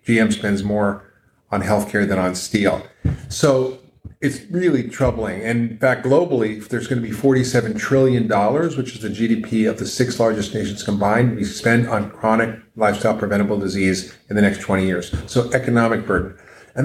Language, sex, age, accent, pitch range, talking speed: English, male, 40-59, American, 105-130 Hz, 165 wpm